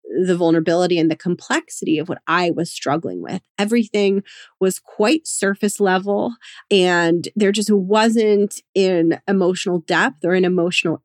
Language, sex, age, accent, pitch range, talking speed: English, female, 30-49, American, 175-210 Hz, 140 wpm